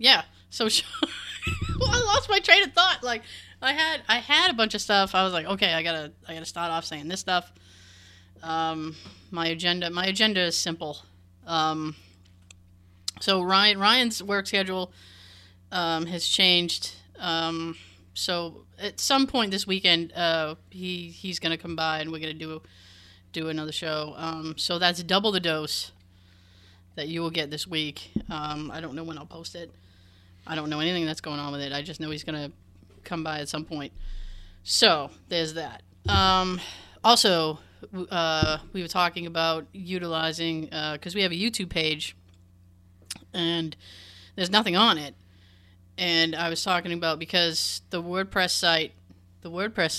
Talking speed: 175 wpm